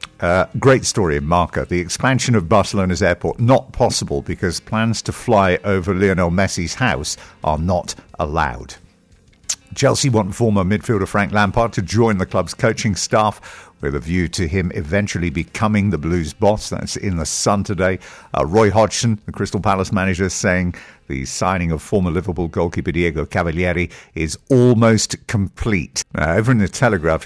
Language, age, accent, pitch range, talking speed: English, 50-69, British, 85-110 Hz, 160 wpm